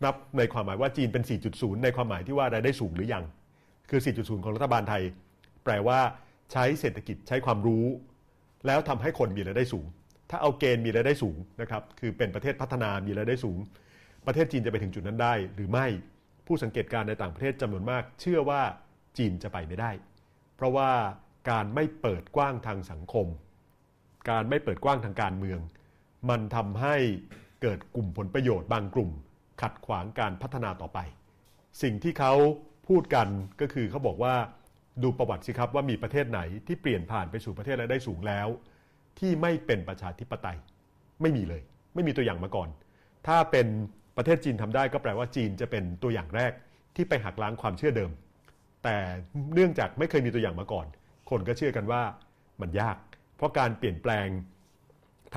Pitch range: 100-130 Hz